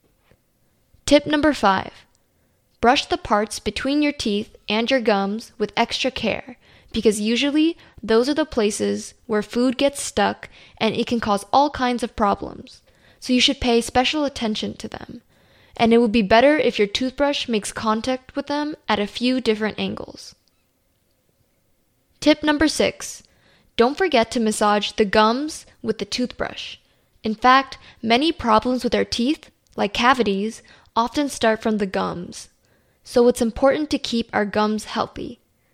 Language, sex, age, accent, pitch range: Korean, female, 10-29, American, 210-255 Hz